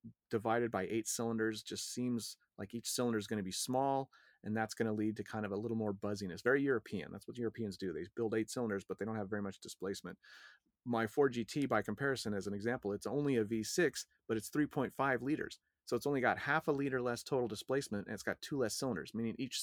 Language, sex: English, male